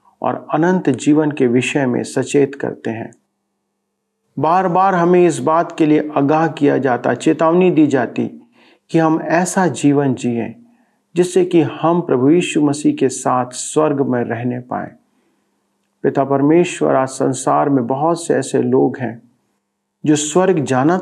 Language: Hindi